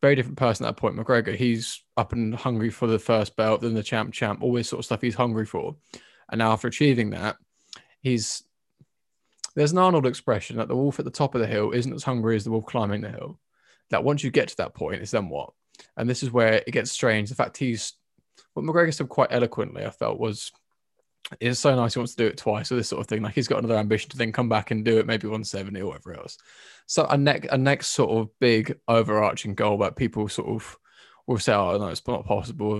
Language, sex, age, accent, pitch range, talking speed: English, male, 20-39, British, 110-125 Hz, 245 wpm